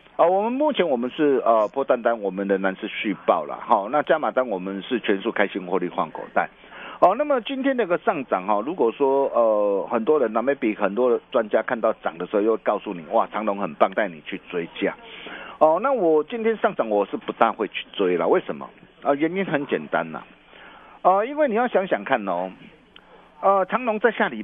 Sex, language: male, Chinese